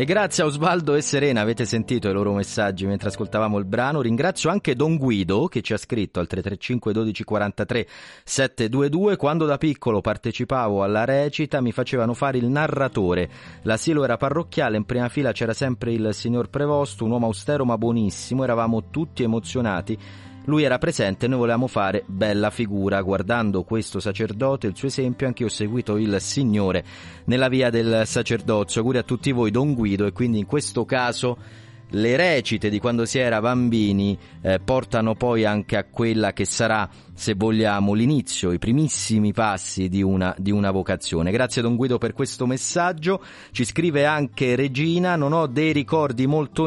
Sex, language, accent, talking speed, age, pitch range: male, Italian, native, 175 wpm, 30-49, 105-135 Hz